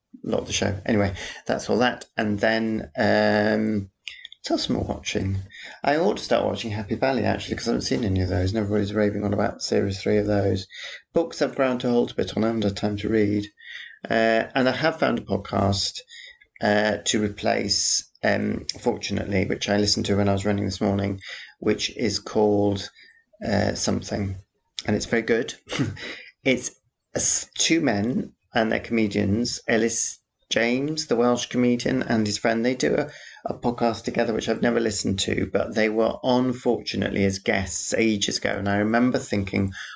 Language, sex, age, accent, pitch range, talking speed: English, male, 30-49, British, 100-115 Hz, 175 wpm